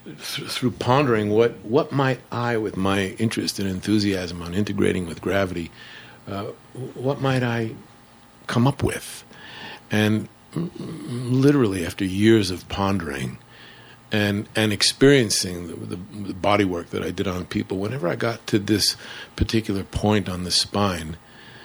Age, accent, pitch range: 50-69, American, 100-120 Hz